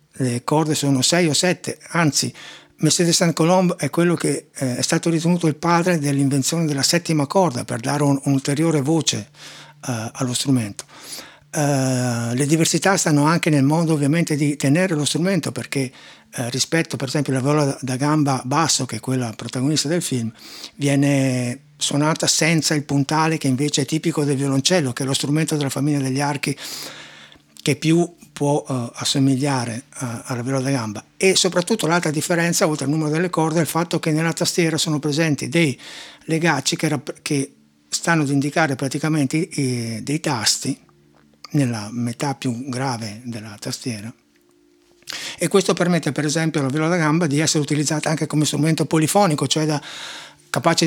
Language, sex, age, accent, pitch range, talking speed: Italian, male, 60-79, native, 135-165 Hz, 165 wpm